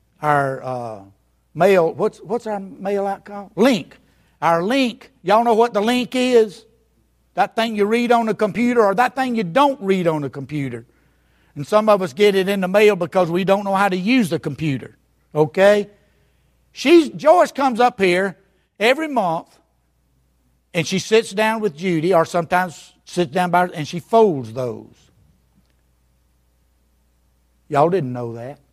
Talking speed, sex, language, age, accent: 165 wpm, male, English, 60-79, American